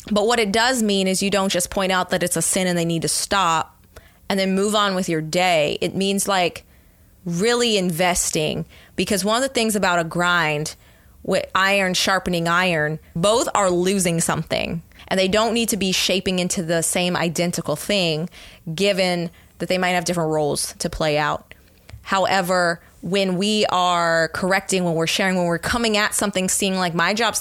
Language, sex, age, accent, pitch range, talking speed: English, female, 20-39, American, 165-195 Hz, 190 wpm